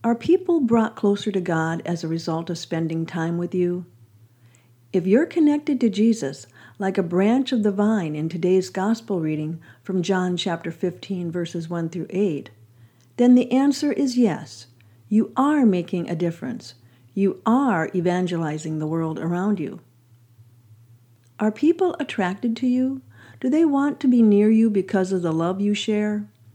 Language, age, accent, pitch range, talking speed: English, 50-69, American, 160-215 Hz, 160 wpm